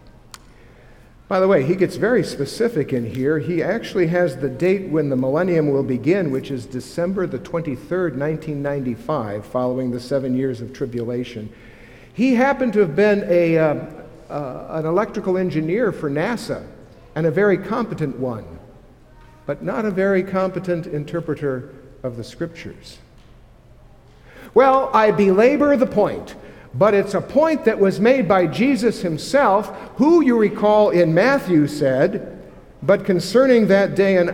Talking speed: 145 wpm